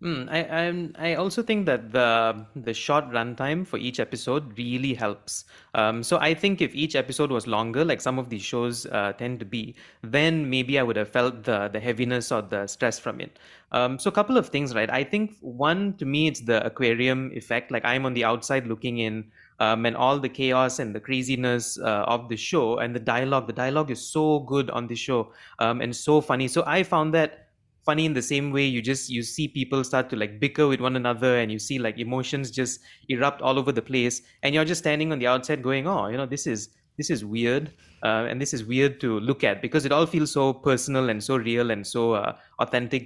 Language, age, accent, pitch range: English, 30-49, Indian, 115-145 Hz